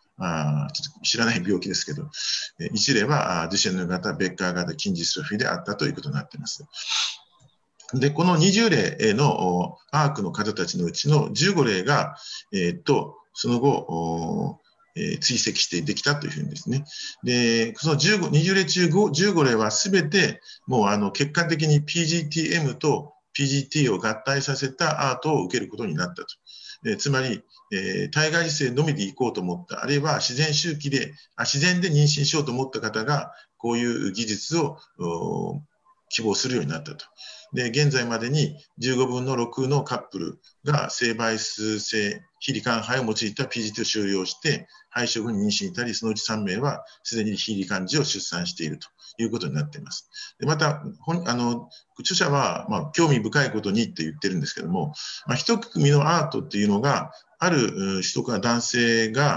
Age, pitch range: 50-69, 110-165 Hz